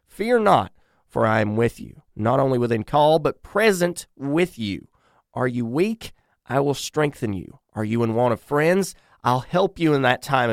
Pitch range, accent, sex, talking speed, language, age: 110-150 Hz, American, male, 195 wpm, English, 30-49